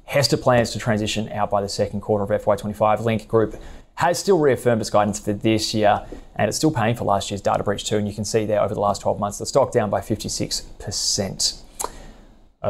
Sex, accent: male, Australian